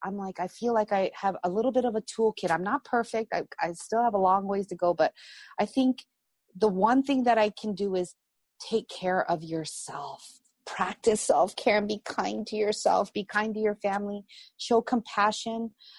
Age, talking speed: 30-49, 205 wpm